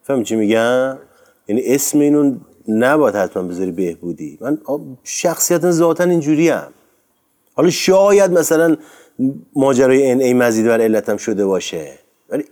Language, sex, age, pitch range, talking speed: Persian, male, 30-49, 115-160 Hz, 125 wpm